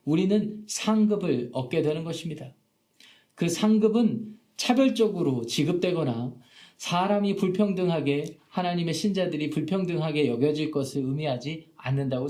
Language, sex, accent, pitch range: Korean, male, native, 140-185 Hz